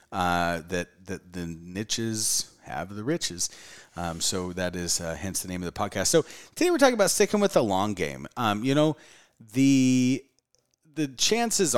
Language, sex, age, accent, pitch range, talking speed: English, male, 30-49, American, 85-125 Hz, 180 wpm